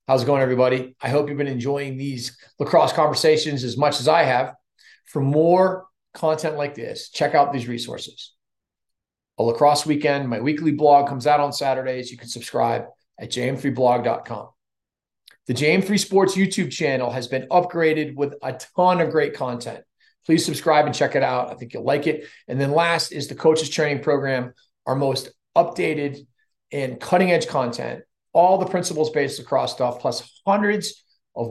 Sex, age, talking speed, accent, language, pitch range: male, 40-59, 175 wpm, American, English, 130-170 Hz